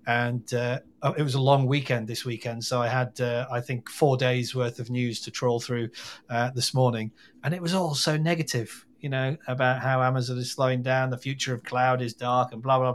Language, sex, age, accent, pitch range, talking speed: English, male, 40-59, British, 125-150 Hz, 225 wpm